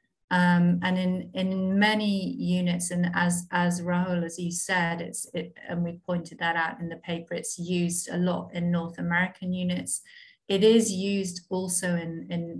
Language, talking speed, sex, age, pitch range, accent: English, 175 wpm, female, 30-49, 175-185 Hz, British